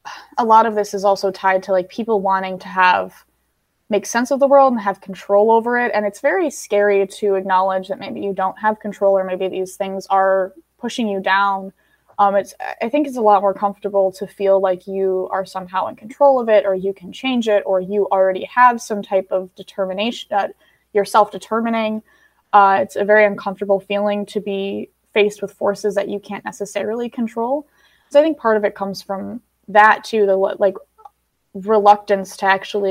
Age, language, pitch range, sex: 10-29, English, 195-215 Hz, female